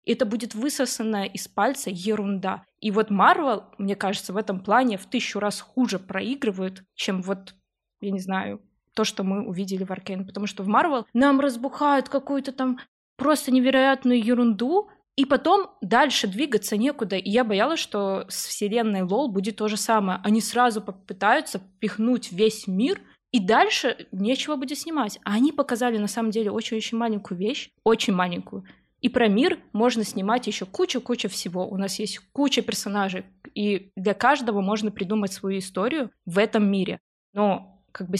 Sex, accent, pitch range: female, native, 195-240 Hz